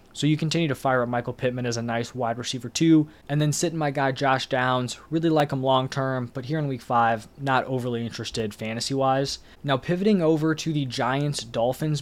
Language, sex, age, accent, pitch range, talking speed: English, male, 20-39, American, 120-145 Hz, 205 wpm